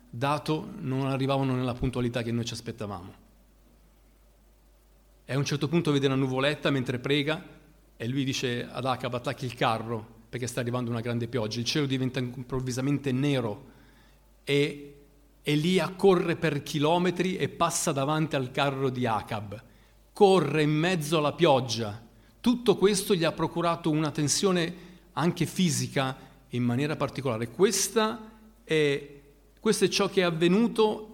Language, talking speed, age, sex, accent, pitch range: Italian, 145 wpm, 40-59, male, native, 135-175 Hz